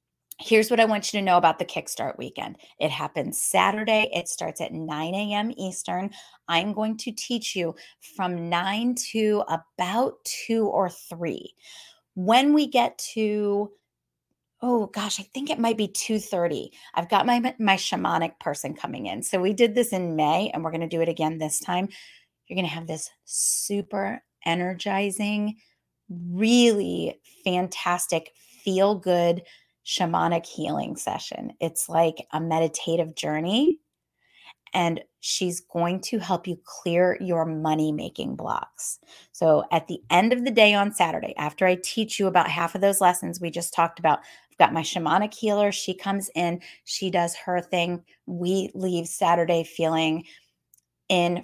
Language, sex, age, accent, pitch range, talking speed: English, female, 30-49, American, 170-210 Hz, 155 wpm